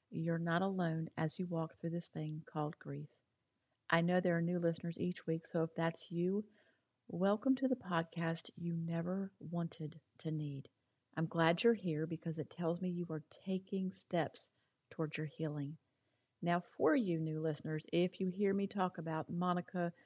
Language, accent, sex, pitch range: English, American, female, 155-185 Hz